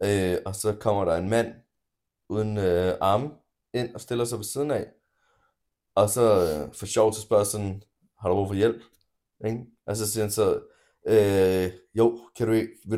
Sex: male